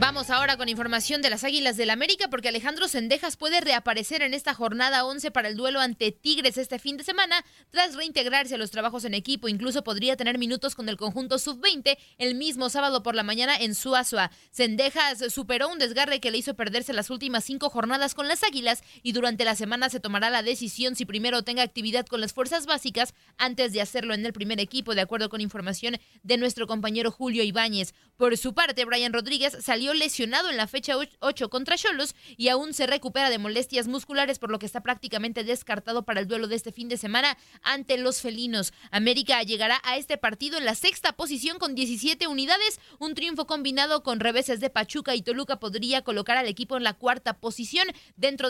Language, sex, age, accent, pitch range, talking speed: Spanish, female, 20-39, Mexican, 230-275 Hz, 205 wpm